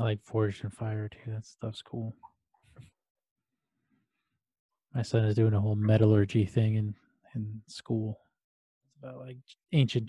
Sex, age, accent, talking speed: male, 20-39, American, 145 wpm